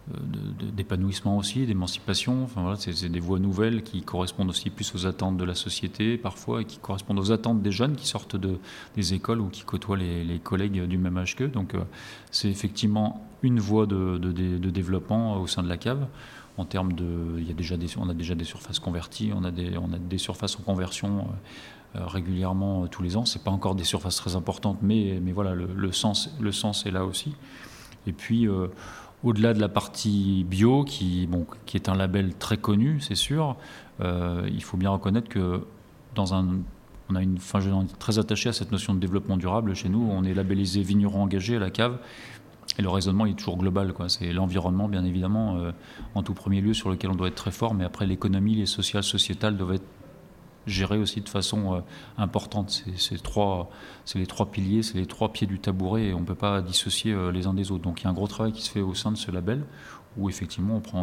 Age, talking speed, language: 30-49, 230 wpm, French